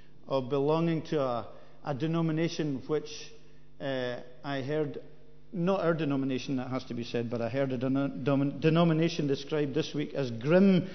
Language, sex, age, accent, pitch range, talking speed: English, male, 50-69, British, 135-180 Hz, 160 wpm